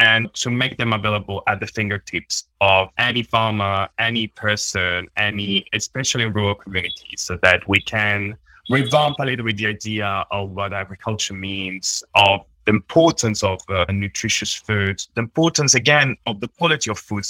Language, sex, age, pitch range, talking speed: English, male, 20-39, 100-130 Hz, 165 wpm